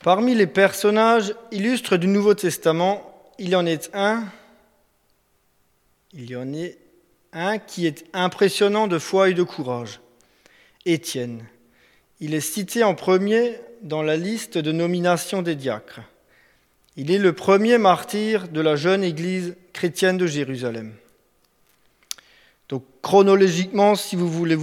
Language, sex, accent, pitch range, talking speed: French, male, French, 160-205 Hz, 125 wpm